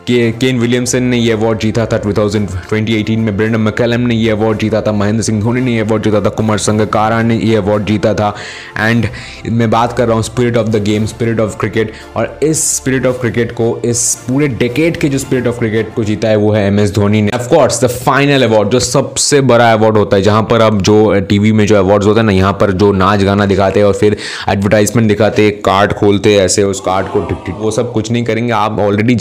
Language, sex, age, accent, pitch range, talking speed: Hindi, male, 20-39, native, 105-125 Hz, 170 wpm